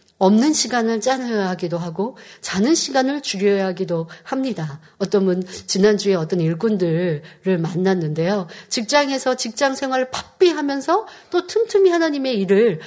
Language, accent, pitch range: Korean, native, 185-255 Hz